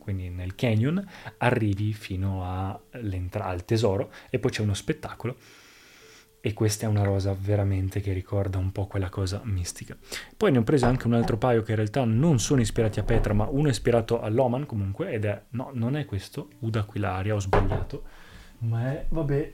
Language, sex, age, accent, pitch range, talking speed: Italian, male, 20-39, native, 105-120 Hz, 185 wpm